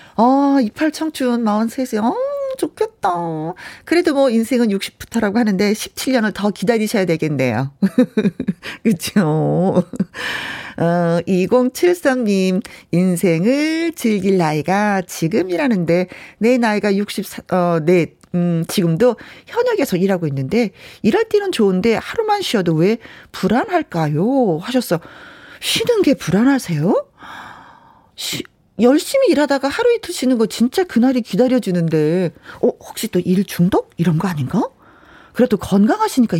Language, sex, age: Korean, female, 40-59